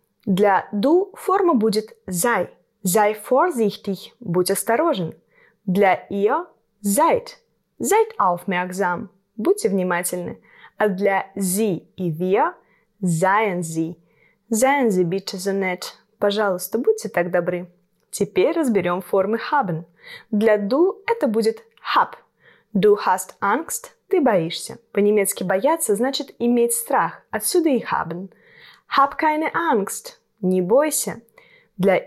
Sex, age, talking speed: female, 20-39, 115 wpm